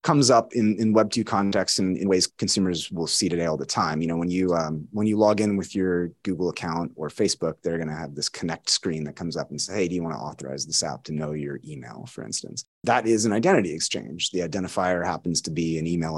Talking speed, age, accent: 255 wpm, 30-49, American